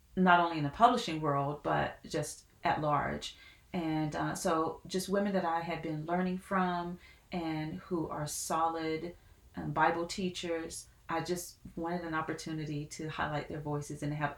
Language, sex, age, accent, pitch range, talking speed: English, female, 30-49, American, 155-185 Hz, 165 wpm